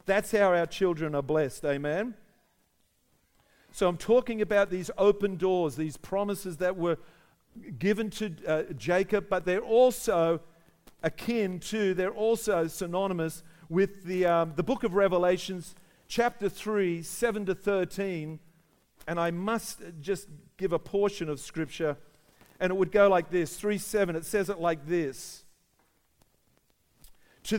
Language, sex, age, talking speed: English, male, 50-69, 140 wpm